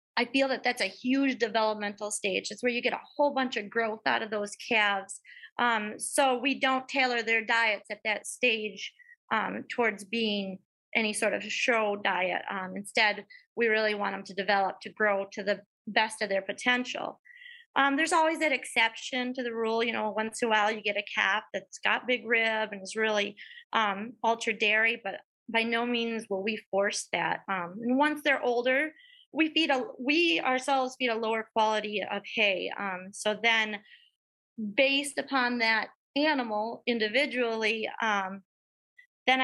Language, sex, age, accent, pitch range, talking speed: English, female, 30-49, American, 205-255 Hz, 180 wpm